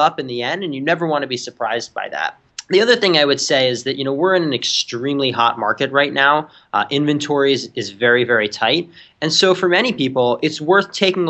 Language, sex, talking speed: English, male, 240 wpm